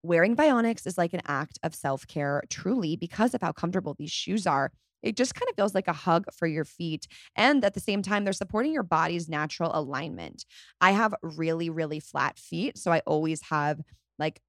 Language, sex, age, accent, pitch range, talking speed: English, female, 20-39, American, 160-205 Hz, 205 wpm